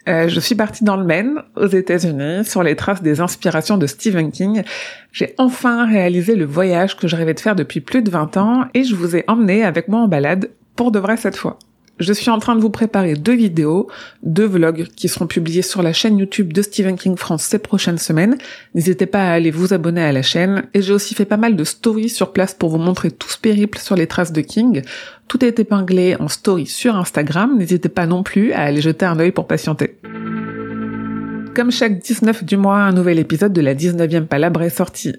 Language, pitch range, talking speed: French, 170-220 Hz, 225 wpm